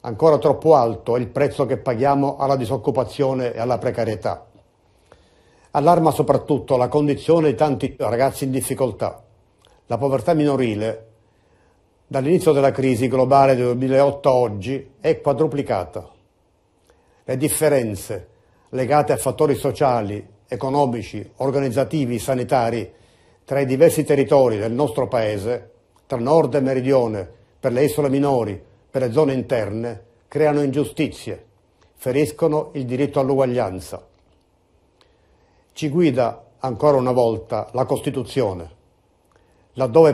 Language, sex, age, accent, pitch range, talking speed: Italian, male, 50-69, native, 110-145 Hz, 115 wpm